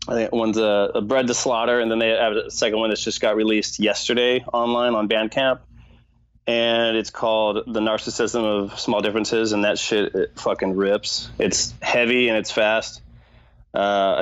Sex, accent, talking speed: male, American, 170 wpm